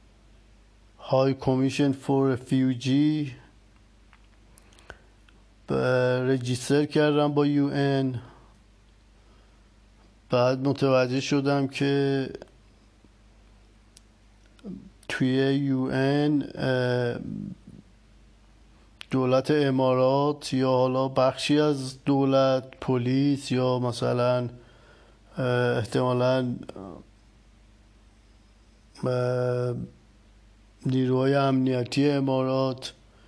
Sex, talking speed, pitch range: male, 50 wpm, 105-135 Hz